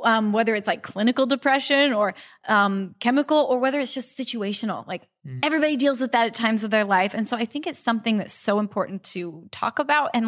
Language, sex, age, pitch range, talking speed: English, female, 20-39, 195-245 Hz, 215 wpm